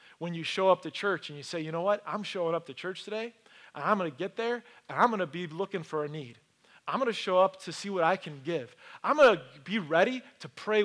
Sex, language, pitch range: male, English, 165-215 Hz